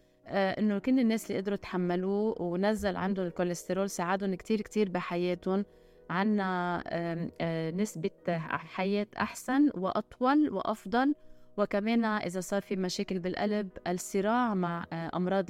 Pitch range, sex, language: 175-210 Hz, female, Arabic